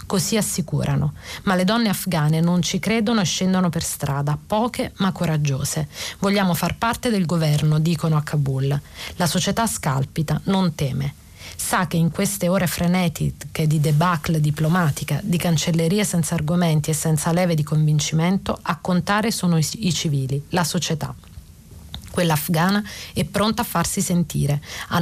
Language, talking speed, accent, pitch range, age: Italian, 150 wpm, native, 155-185 Hz, 40-59